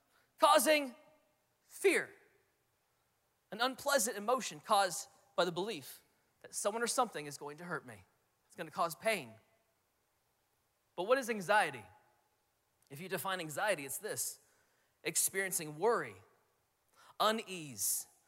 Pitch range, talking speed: 170-275 Hz, 115 wpm